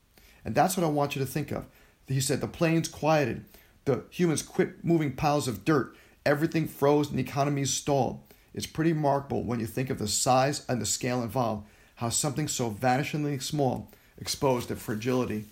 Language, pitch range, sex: English, 120-150 Hz, male